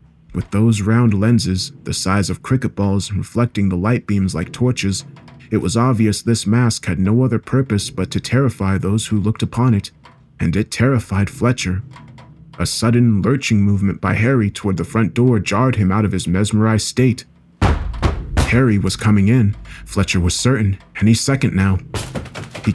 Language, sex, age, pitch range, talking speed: English, male, 30-49, 100-125 Hz, 170 wpm